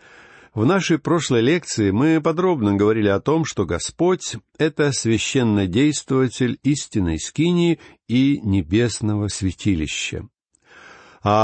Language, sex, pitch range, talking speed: Russian, male, 105-140 Hz, 105 wpm